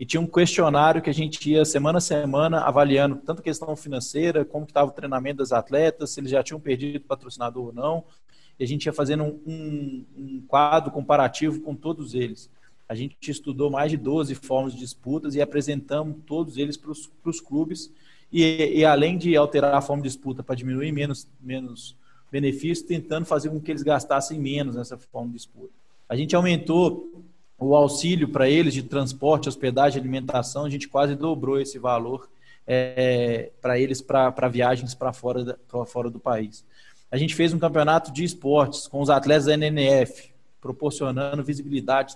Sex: male